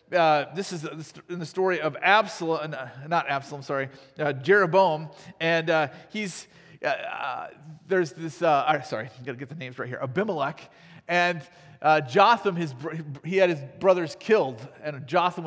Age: 40-59